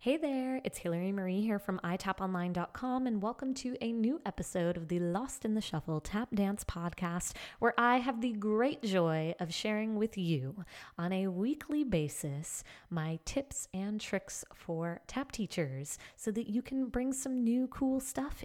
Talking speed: 170 wpm